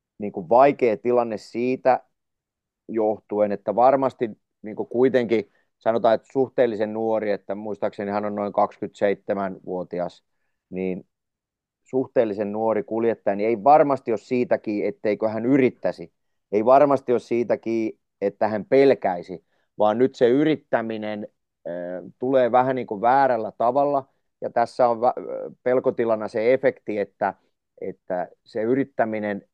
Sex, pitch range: male, 105-130 Hz